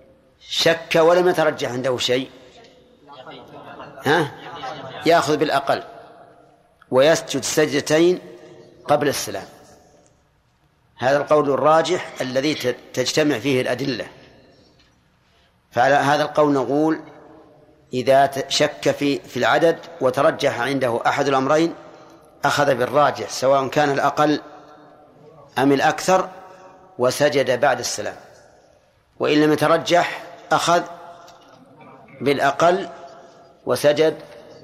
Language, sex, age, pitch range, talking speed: Arabic, male, 40-59, 140-160 Hz, 85 wpm